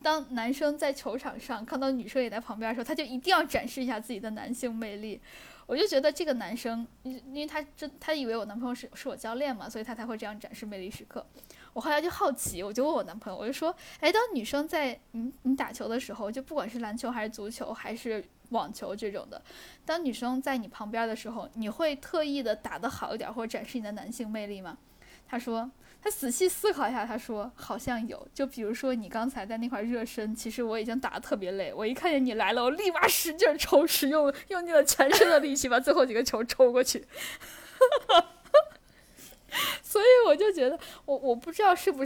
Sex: female